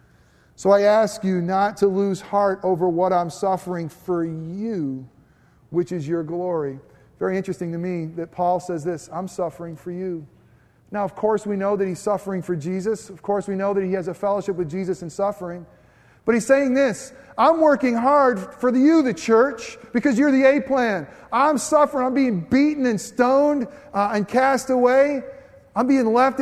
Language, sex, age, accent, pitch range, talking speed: English, male, 40-59, American, 155-220 Hz, 185 wpm